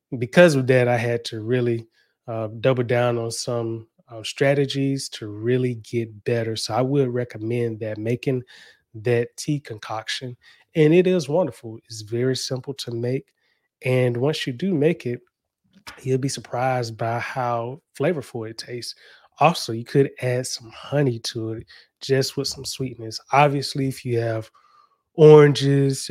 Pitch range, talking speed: 115-140 Hz, 155 wpm